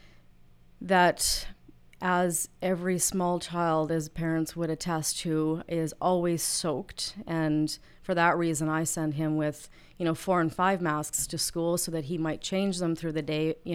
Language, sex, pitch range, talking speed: English, female, 155-175 Hz, 170 wpm